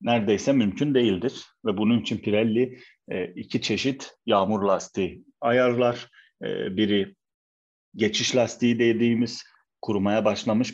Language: Turkish